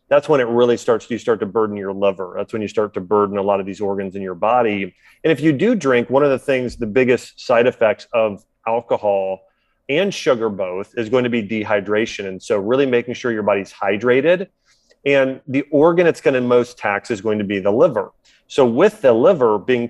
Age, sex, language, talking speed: 30-49, male, English, 230 wpm